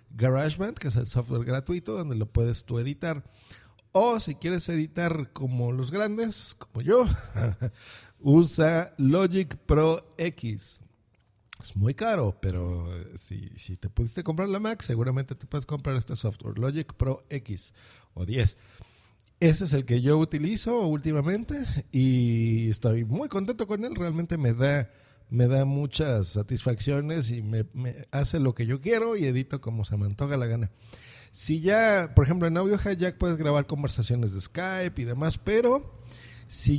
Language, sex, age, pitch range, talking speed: Spanish, male, 50-69, 115-165 Hz, 160 wpm